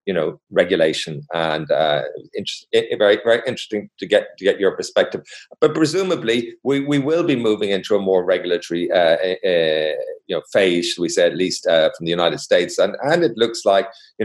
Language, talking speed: English, 195 wpm